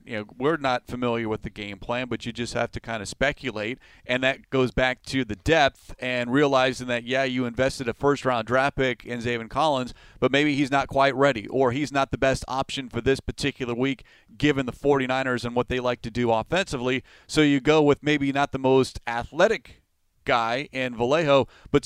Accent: American